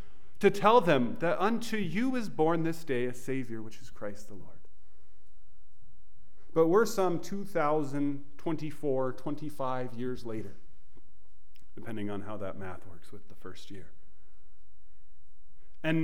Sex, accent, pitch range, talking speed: male, American, 95-150 Hz, 130 wpm